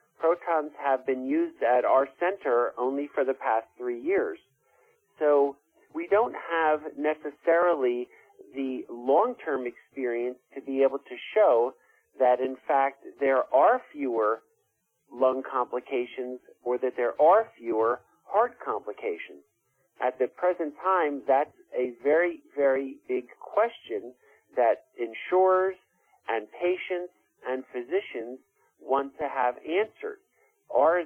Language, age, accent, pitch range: English, 50-69, American, 135-195 Hz